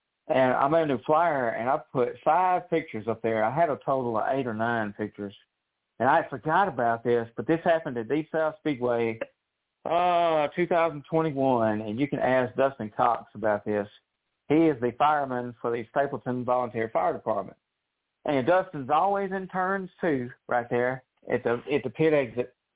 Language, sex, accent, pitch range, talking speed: English, male, American, 120-160 Hz, 175 wpm